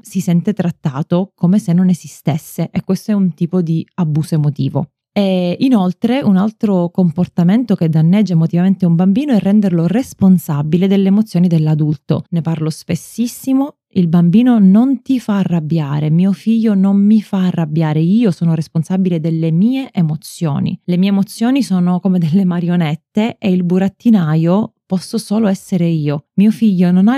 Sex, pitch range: female, 165-200 Hz